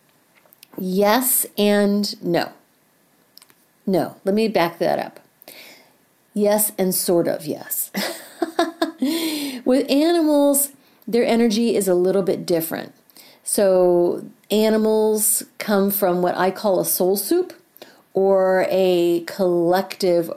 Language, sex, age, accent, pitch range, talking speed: English, female, 50-69, American, 185-255 Hz, 105 wpm